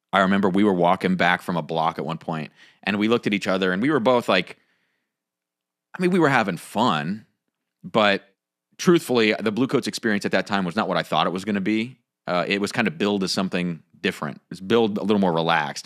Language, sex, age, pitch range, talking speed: English, male, 30-49, 90-125 Hz, 240 wpm